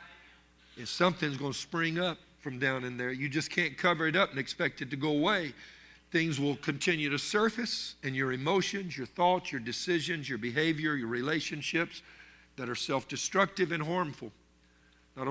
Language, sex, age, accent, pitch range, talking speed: English, male, 50-69, American, 130-165 Hz, 175 wpm